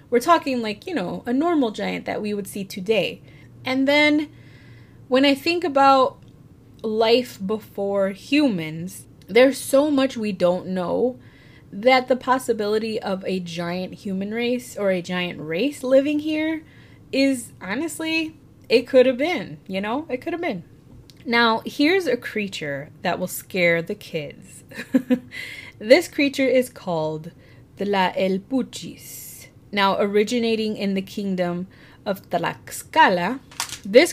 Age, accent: 20-39, American